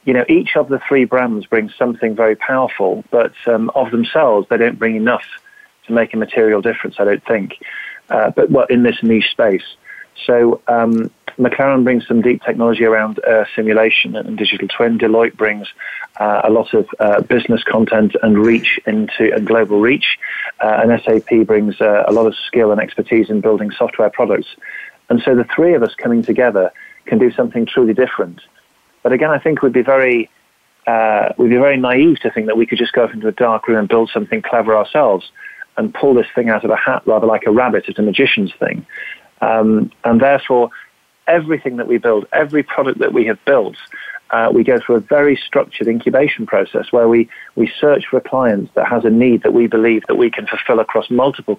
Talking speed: 205 wpm